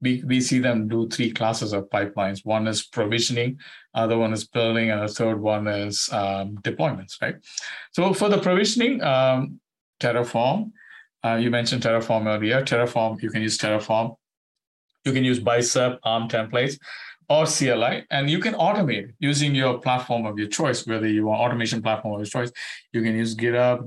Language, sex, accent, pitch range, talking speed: English, male, Indian, 110-135 Hz, 175 wpm